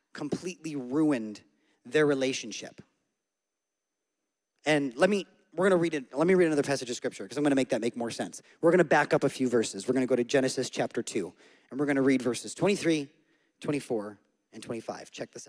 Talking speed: 200 wpm